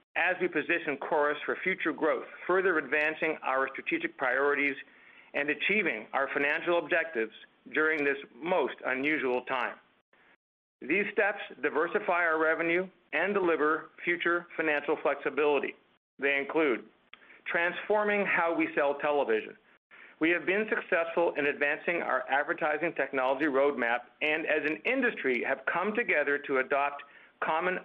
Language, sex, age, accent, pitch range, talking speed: English, male, 50-69, American, 145-175 Hz, 125 wpm